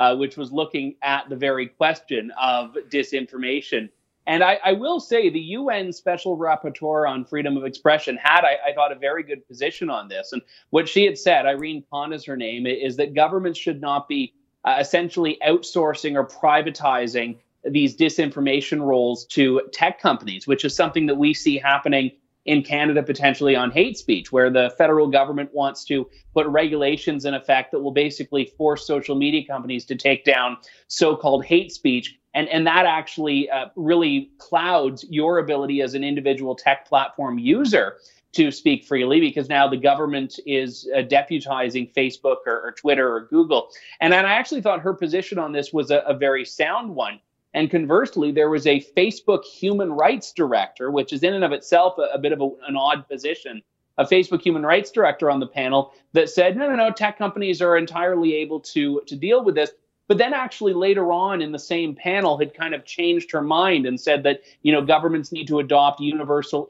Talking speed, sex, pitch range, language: 190 wpm, male, 140-175 Hz, English